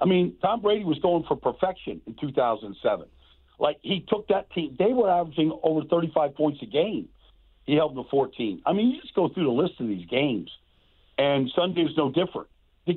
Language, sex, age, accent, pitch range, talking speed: English, male, 50-69, American, 135-180 Hz, 200 wpm